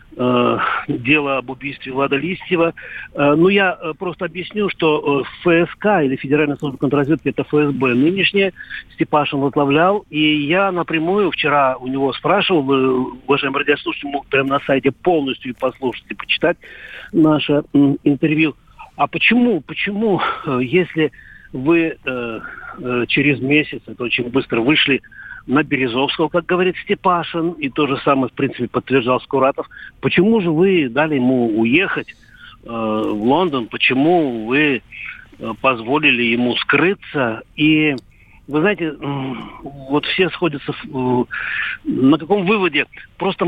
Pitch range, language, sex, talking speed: 135-175 Hz, Russian, male, 130 wpm